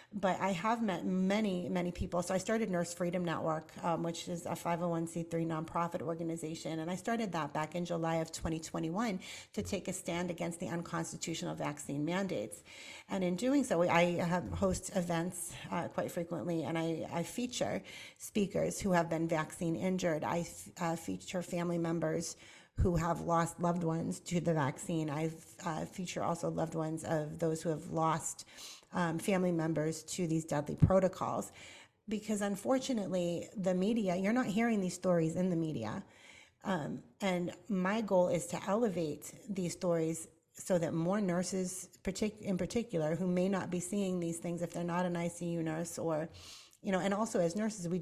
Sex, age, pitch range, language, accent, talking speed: female, 40-59, 165-185 Hz, English, American, 170 wpm